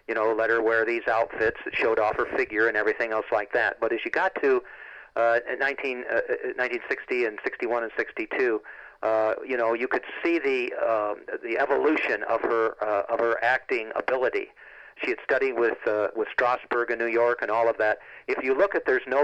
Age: 50-69